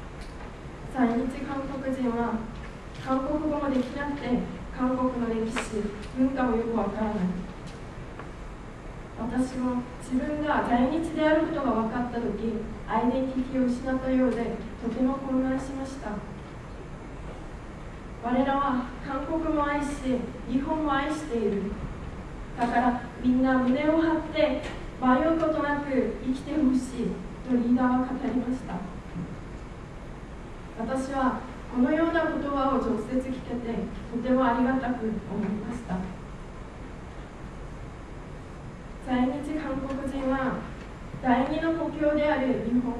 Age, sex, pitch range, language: 20-39, female, 235-275 Hz, Japanese